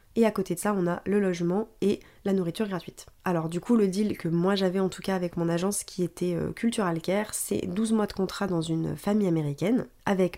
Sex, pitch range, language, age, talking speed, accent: female, 180-210 Hz, French, 20-39, 245 wpm, French